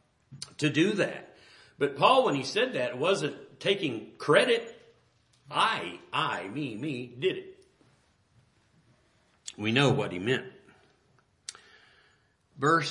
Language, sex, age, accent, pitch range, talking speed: English, male, 50-69, American, 120-195 Hz, 110 wpm